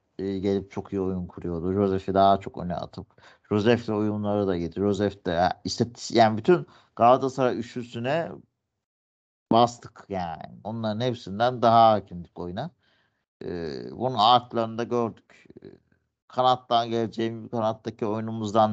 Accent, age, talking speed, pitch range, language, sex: native, 50-69, 105 wpm, 95-120 Hz, Turkish, male